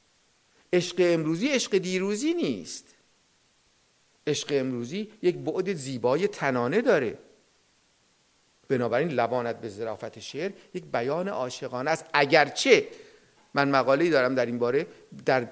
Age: 50-69